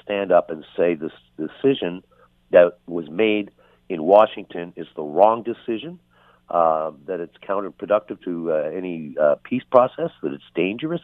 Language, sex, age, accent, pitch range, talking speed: English, male, 60-79, American, 80-115 Hz, 150 wpm